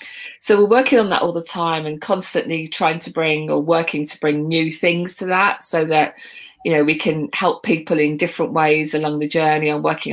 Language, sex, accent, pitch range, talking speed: English, female, British, 150-175 Hz, 220 wpm